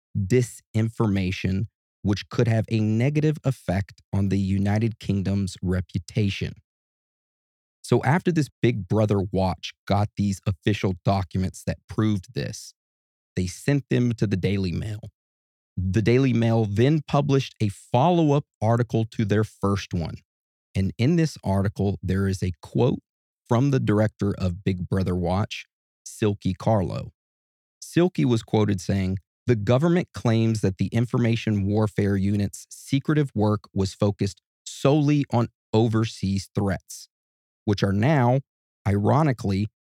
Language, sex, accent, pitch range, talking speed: English, male, American, 95-120 Hz, 130 wpm